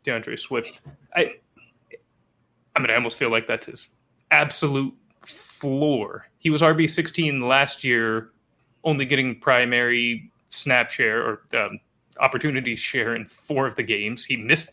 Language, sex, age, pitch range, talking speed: English, male, 20-39, 115-150 Hz, 140 wpm